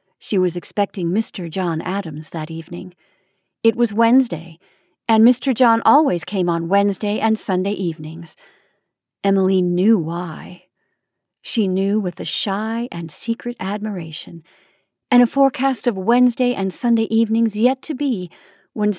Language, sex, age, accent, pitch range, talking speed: English, female, 40-59, American, 175-225 Hz, 140 wpm